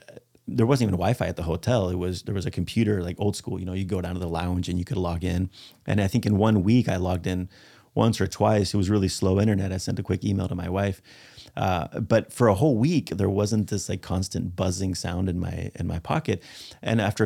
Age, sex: 30-49, male